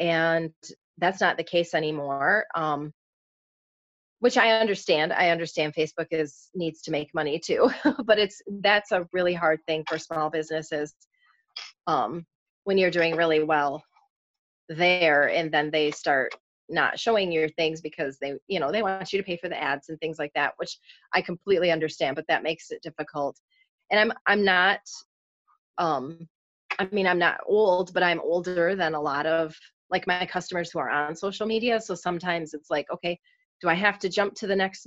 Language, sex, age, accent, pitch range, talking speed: English, female, 30-49, American, 160-195 Hz, 185 wpm